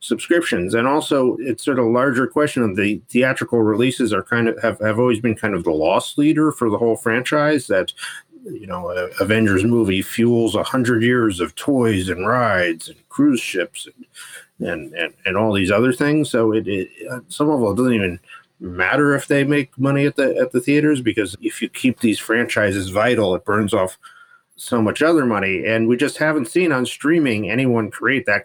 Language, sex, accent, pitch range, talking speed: English, male, American, 110-145 Hz, 200 wpm